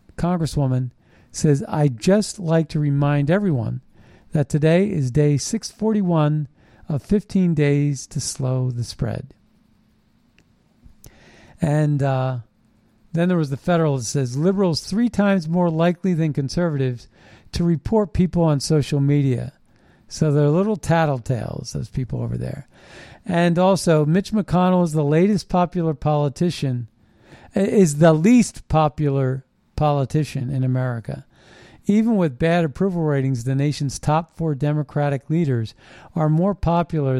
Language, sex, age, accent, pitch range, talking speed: English, male, 50-69, American, 130-170 Hz, 130 wpm